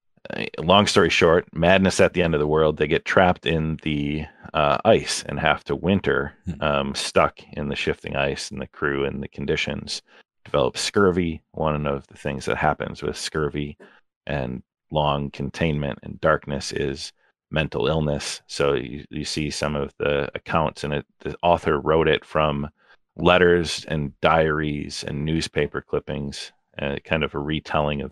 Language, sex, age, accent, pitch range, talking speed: English, male, 40-59, American, 70-80 Hz, 165 wpm